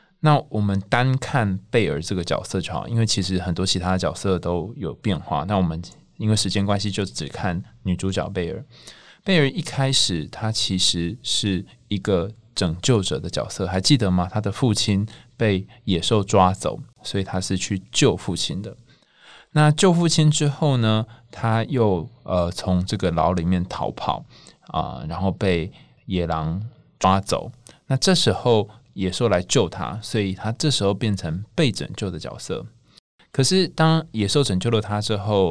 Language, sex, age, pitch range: Chinese, male, 20-39, 95-120 Hz